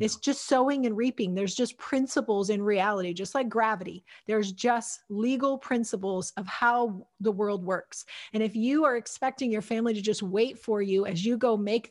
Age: 30-49